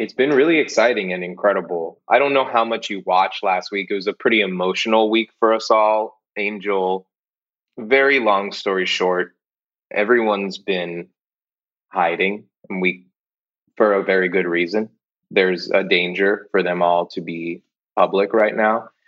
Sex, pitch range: male, 90-110 Hz